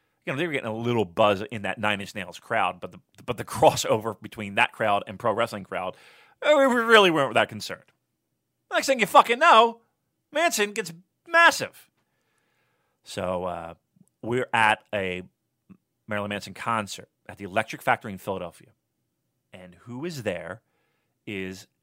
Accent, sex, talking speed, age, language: American, male, 160 wpm, 30-49, English